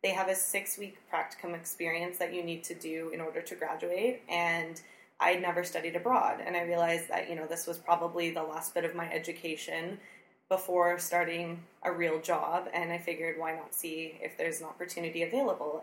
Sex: female